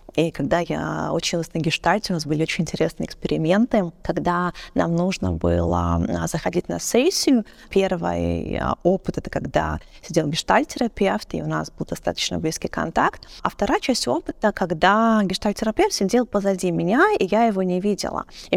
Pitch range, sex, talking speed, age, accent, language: 170-215 Hz, female, 160 wpm, 20-39, native, Russian